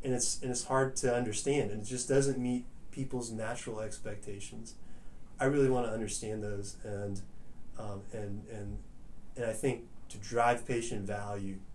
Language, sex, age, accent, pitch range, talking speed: English, male, 20-39, American, 100-115 Hz, 165 wpm